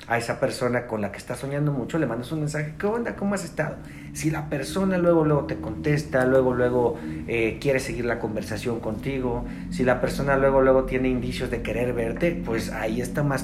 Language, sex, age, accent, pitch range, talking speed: Spanish, male, 40-59, Mexican, 115-150 Hz, 210 wpm